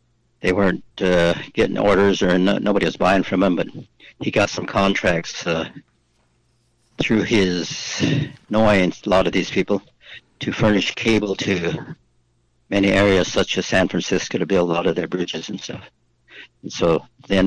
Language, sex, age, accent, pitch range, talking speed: English, male, 60-79, American, 90-105 Hz, 160 wpm